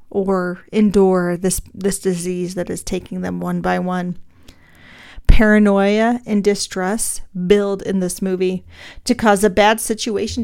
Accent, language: American, English